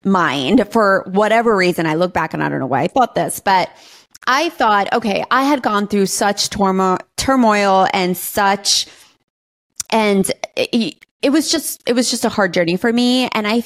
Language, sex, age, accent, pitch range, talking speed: English, female, 30-49, American, 190-260 Hz, 190 wpm